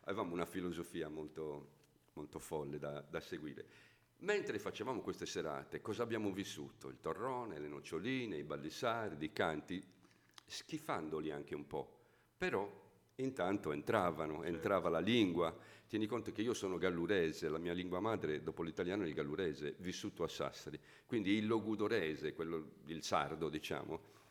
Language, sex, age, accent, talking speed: Italian, male, 50-69, native, 145 wpm